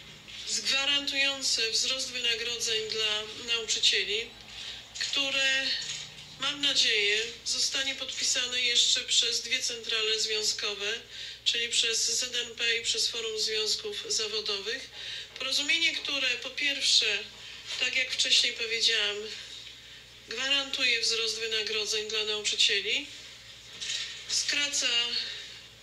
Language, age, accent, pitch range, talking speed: Polish, 40-59, native, 230-295 Hz, 85 wpm